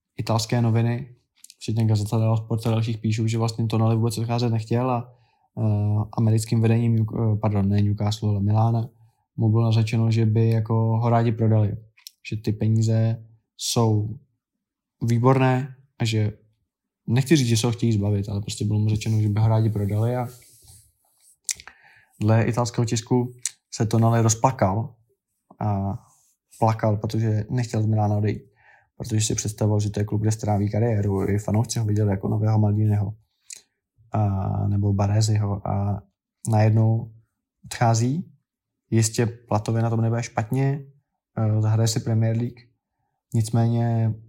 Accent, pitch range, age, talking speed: native, 105-115 Hz, 20-39, 140 wpm